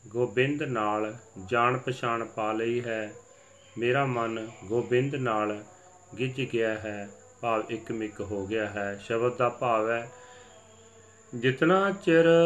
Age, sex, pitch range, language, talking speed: 40-59, male, 110-140 Hz, Punjabi, 125 wpm